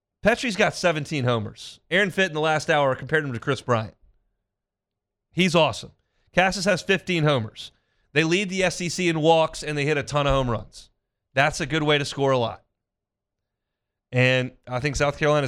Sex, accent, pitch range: male, American, 125-170 Hz